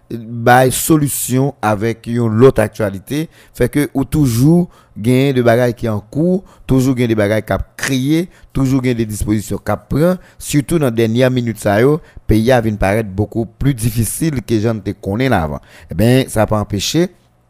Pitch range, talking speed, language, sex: 110-135 Hz, 175 wpm, French, male